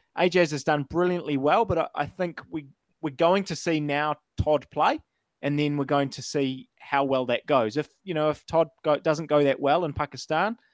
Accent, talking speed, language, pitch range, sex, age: Australian, 210 wpm, English, 135-160 Hz, male, 20-39